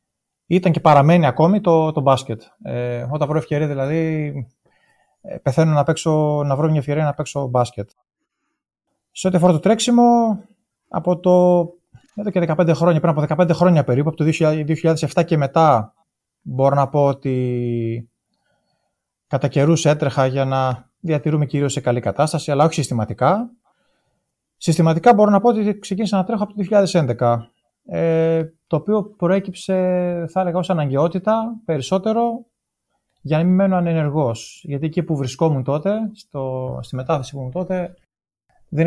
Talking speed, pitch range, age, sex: 140 wpm, 140-185 Hz, 30-49, male